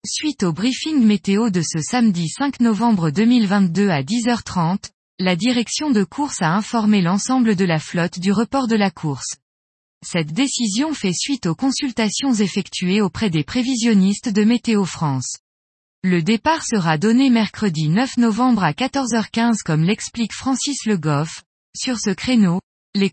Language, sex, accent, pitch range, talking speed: French, female, French, 180-245 Hz, 150 wpm